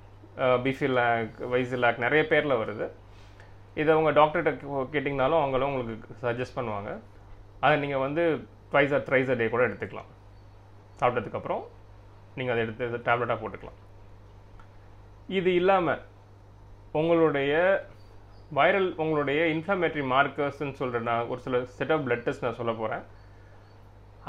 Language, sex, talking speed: Tamil, male, 110 wpm